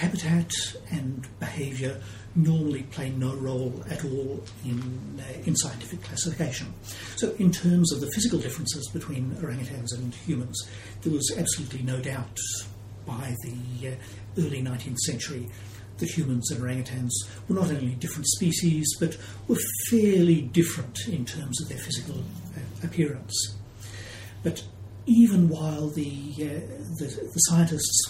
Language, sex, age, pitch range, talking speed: English, male, 60-79, 105-155 Hz, 135 wpm